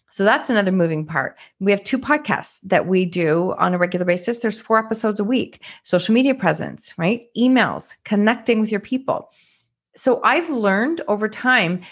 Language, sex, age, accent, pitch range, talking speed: English, female, 30-49, American, 180-240 Hz, 175 wpm